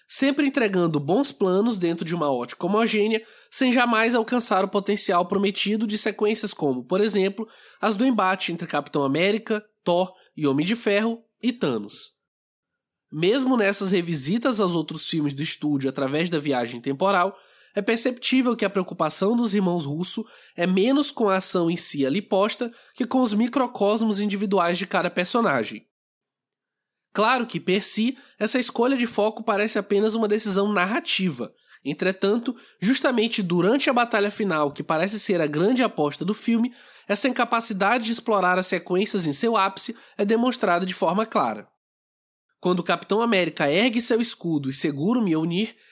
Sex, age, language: male, 20-39, Portuguese